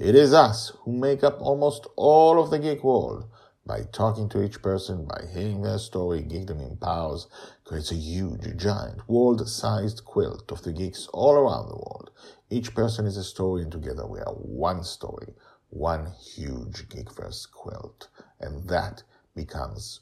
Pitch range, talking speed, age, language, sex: 85-120 Hz, 170 wpm, 50-69, English, male